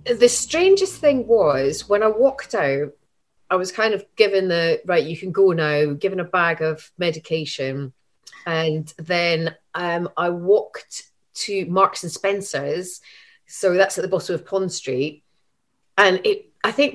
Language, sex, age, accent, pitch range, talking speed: English, female, 40-59, British, 165-250 Hz, 160 wpm